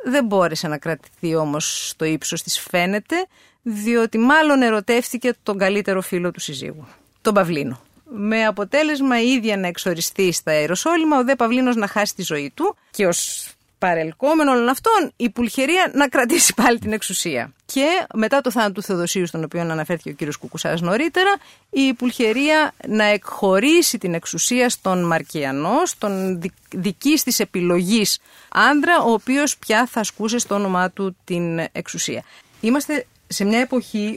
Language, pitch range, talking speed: English, 170-245 Hz, 150 wpm